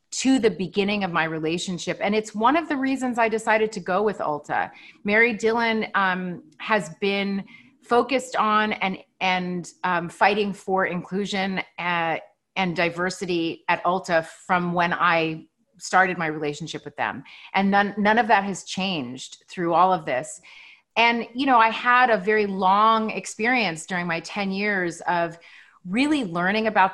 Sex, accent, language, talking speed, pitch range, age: female, American, English, 160 wpm, 175-220 Hz, 30-49